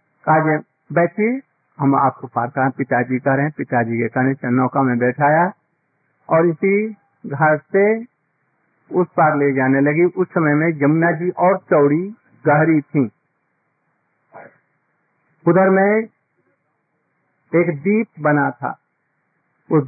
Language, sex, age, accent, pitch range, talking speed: Hindi, male, 50-69, native, 150-190 Hz, 120 wpm